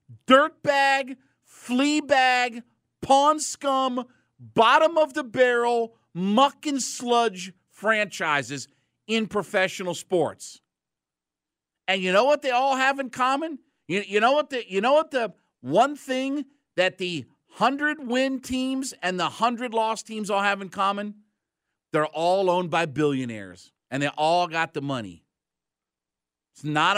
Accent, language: American, English